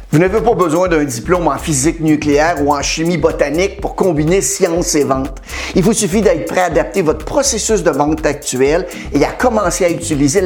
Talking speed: 200 wpm